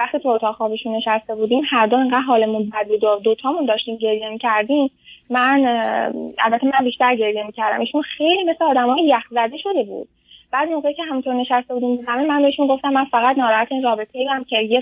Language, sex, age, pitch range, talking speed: Persian, female, 10-29, 225-280 Hz, 190 wpm